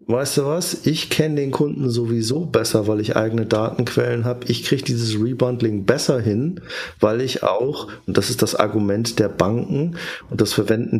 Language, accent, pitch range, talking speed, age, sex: German, German, 110-135 Hz, 180 wpm, 50-69, male